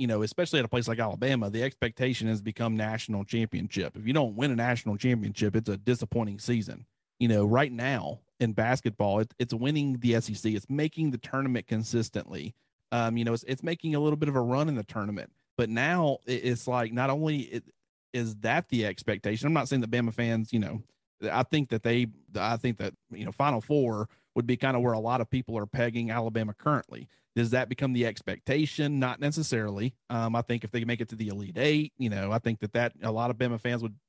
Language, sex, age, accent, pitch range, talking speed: English, male, 40-59, American, 115-140 Hz, 225 wpm